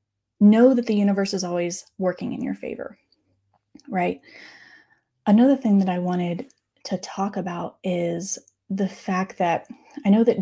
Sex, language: female, English